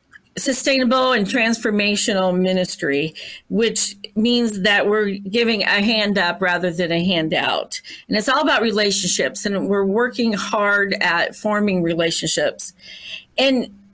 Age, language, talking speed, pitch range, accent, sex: 50-69, English, 125 wpm, 195-260 Hz, American, female